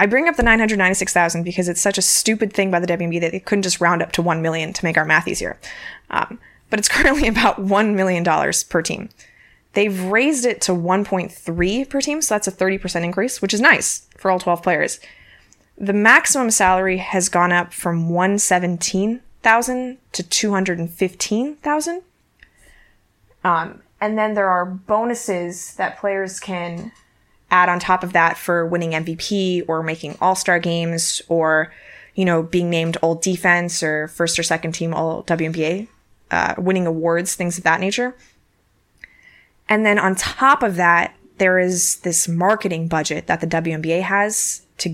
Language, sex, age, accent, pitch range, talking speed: English, female, 20-39, American, 170-200 Hz, 165 wpm